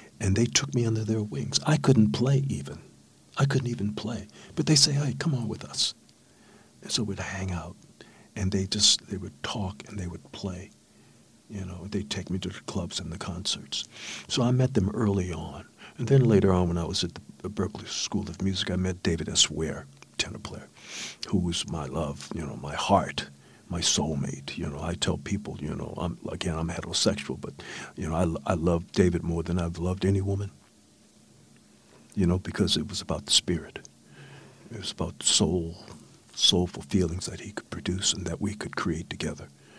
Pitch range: 85-105 Hz